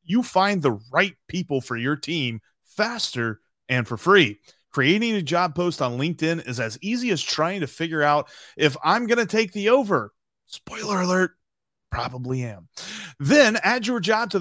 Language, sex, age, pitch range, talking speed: English, male, 30-49, 130-195 Hz, 175 wpm